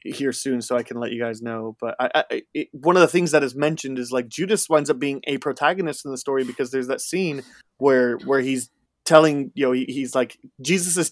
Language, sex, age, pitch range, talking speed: English, male, 20-39, 125-160 Hz, 230 wpm